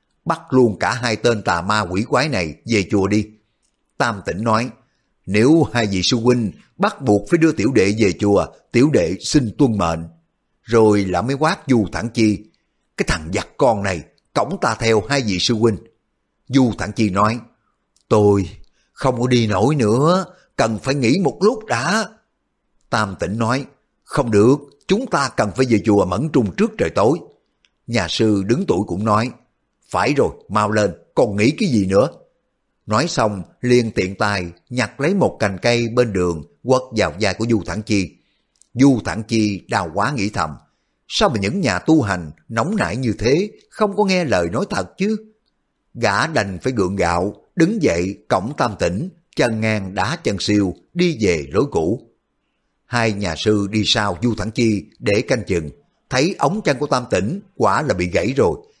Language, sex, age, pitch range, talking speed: Vietnamese, male, 60-79, 100-130 Hz, 190 wpm